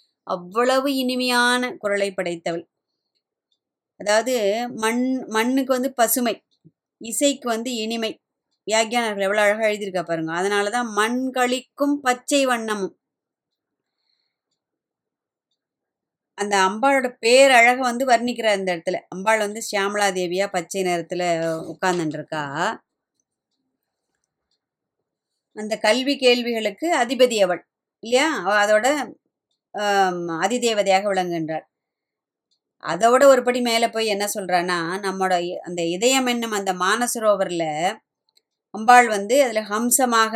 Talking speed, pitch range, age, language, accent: 95 wpm, 185-240 Hz, 20-39, Tamil, native